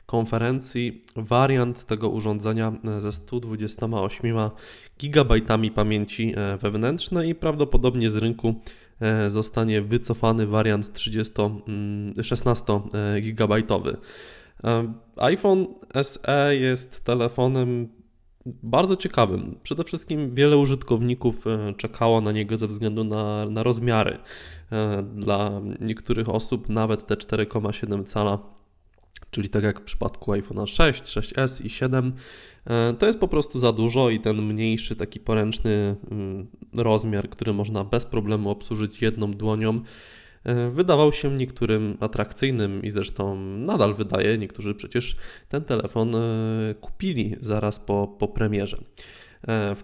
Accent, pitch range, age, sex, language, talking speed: native, 105-120 Hz, 20-39, male, Polish, 110 wpm